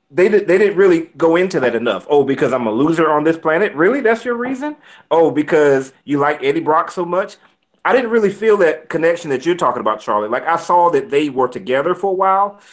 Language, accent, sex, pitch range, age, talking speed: English, American, male, 125-185 Hz, 30-49, 230 wpm